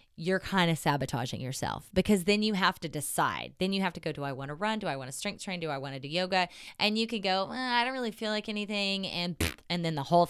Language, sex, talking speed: English, female, 290 wpm